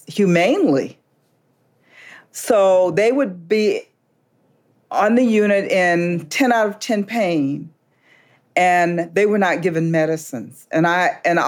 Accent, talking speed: American, 120 wpm